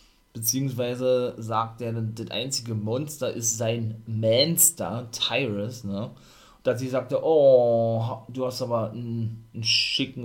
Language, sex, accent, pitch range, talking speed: German, male, German, 110-130 Hz, 130 wpm